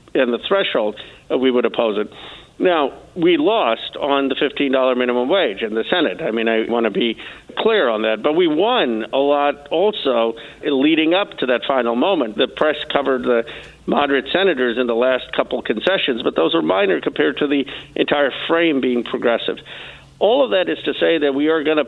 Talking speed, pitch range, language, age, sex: 205 wpm, 130-150 Hz, English, 50-69, male